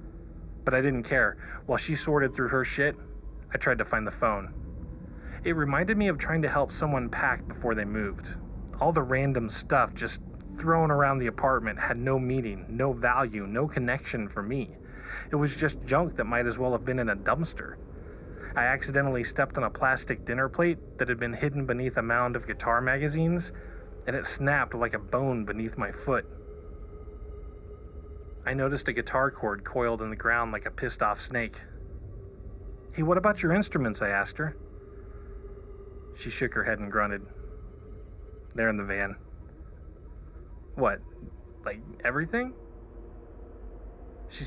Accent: American